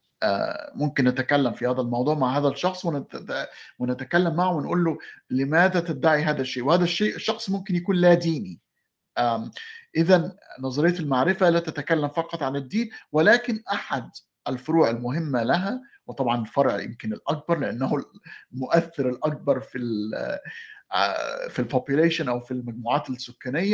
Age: 50-69